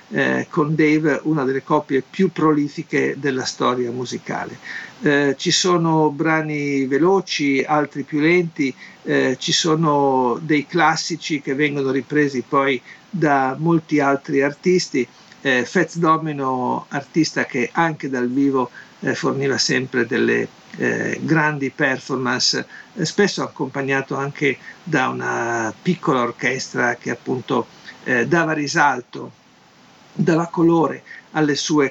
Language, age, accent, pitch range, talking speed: Italian, 50-69, native, 135-165 Hz, 120 wpm